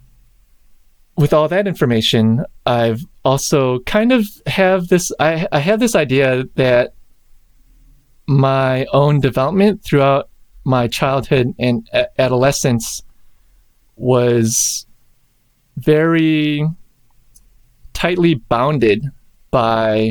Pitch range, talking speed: 115-140 Hz, 90 wpm